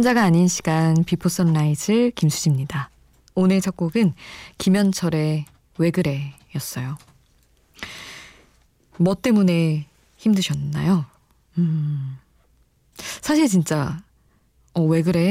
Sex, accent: female, native